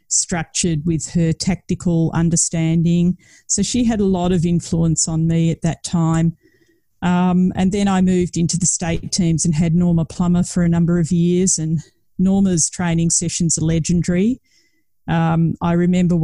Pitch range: 165-185 Hz